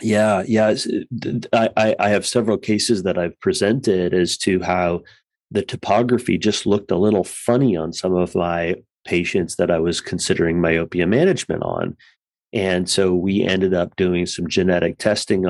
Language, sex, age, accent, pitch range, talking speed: English, male, 30-49, American, 85-100 Hz, 160 wpm